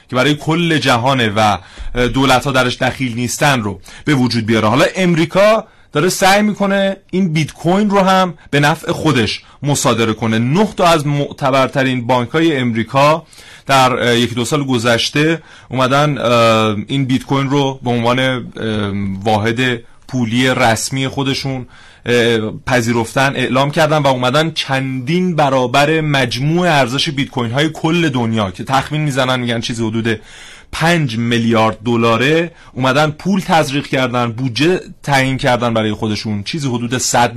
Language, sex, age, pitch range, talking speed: Persian, male, 30-49, 120-150 Hz, 135 wpm